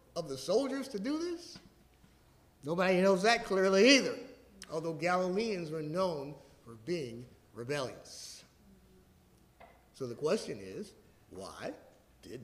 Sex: male